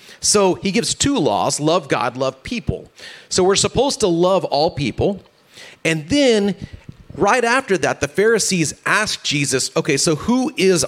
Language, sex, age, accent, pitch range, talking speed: English, male, 30-49, American, 130-175 Hz, 160 wpm